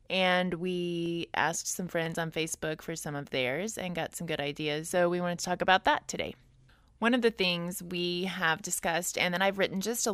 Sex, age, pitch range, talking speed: female, 20-39, 155-180 Hz, 220 wpm